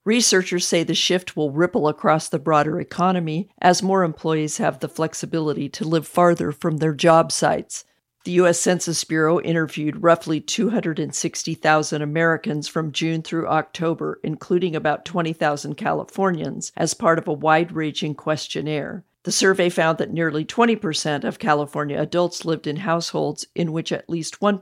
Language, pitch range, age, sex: English, 150-175 Hz, 50-69, female